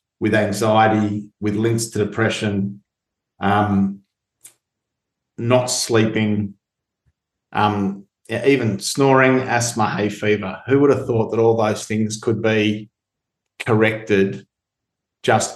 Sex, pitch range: male, 100-115 Hz